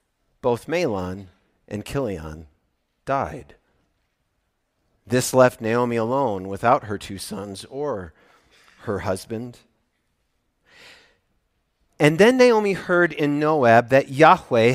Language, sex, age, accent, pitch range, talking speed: English, male, 40-59, American, 120-165 Hz, 100 wpm